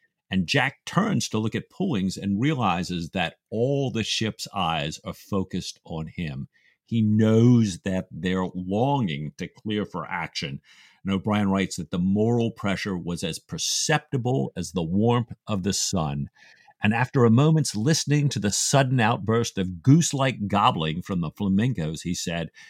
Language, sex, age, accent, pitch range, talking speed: English, male, 50-69, American, 95-130 Hz, 160 wpm